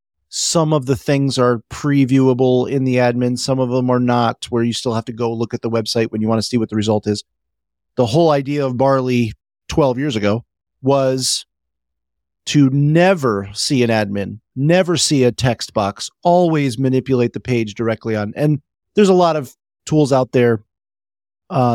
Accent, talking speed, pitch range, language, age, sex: American, 185 wpm, 110-150 Hz, English, 30-49, male